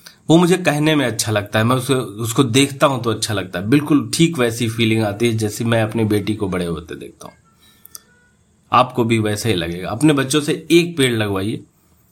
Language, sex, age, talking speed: Hindi, male, 30-49, 210 wpm